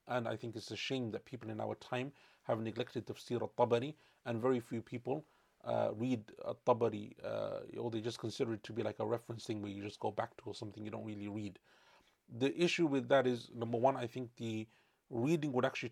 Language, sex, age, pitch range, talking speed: English, male, 30-49, 115-130 Hz, 220 wpm